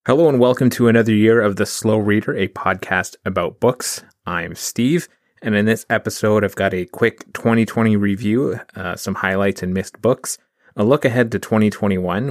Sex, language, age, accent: male, English, 30-49, American